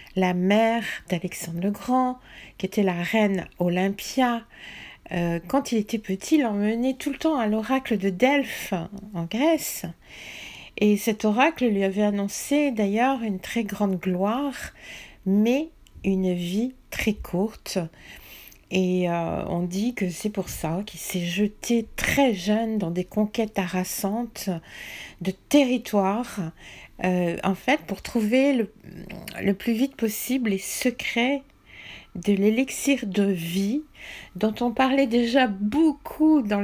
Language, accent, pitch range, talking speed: French, French, 195-255 Hz, 135 wpm